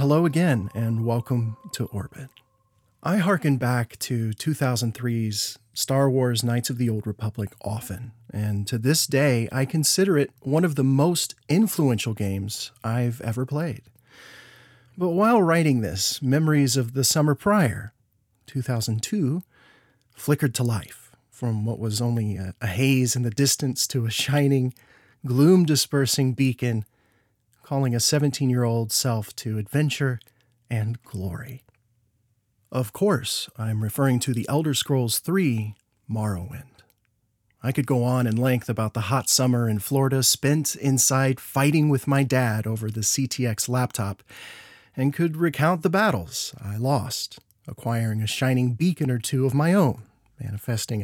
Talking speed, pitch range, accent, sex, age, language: 140 wpm, 110-140 Hz, American, male, 40-59, English